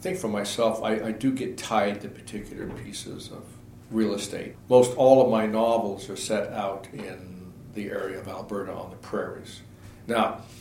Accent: American